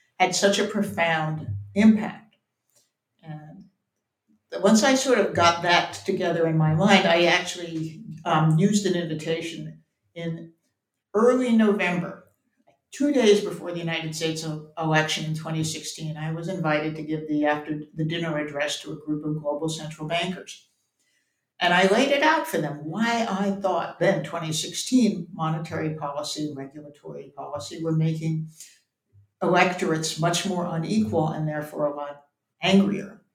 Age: 60-79